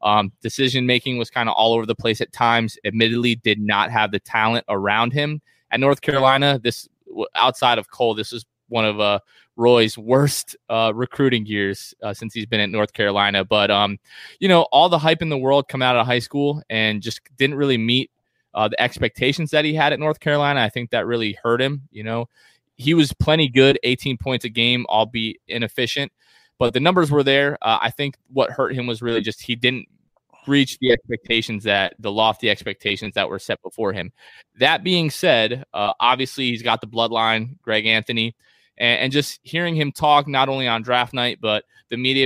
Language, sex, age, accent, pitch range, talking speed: English, male, 20-39, American, 110-135 Hz, 205 wpm